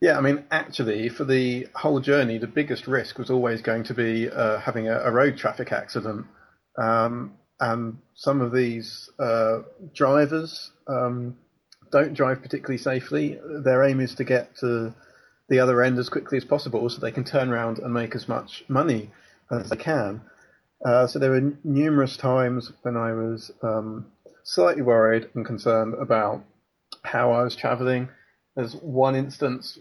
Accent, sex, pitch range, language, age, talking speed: British, male, 120-140 Hz, English, 30-49, 165 wpm